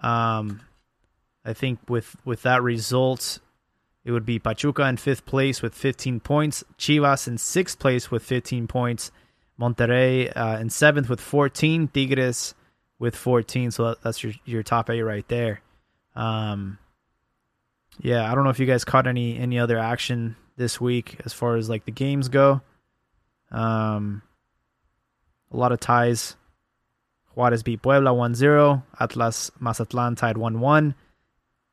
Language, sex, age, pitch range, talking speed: English, male, 20-39, 115-135 Hz, 145 wpm